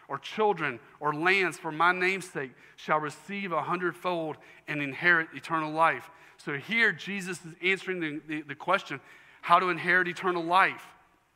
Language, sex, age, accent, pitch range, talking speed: English, male, 40-59, American, 130-180 Hz, 155 wpm